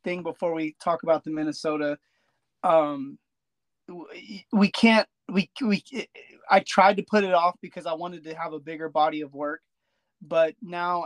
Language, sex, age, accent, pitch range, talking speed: English, male, 30-49, American, 160-195 Hz, 165 wpm